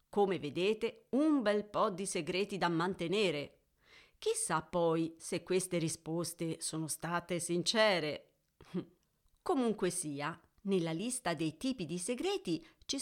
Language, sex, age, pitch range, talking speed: Italian, female, 40-59, 165-255 Hz, 120 wpm